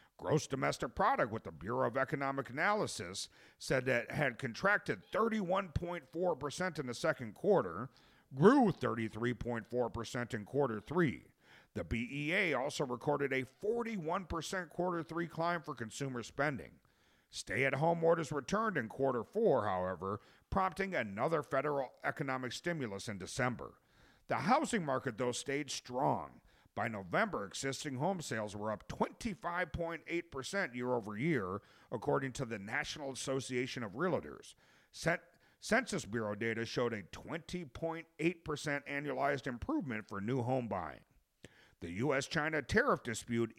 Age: 50-69